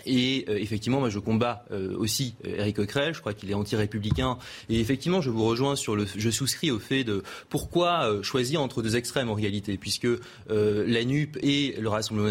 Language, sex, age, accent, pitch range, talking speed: French, male, 30-49, French, 110-140 Hz, 205 wpm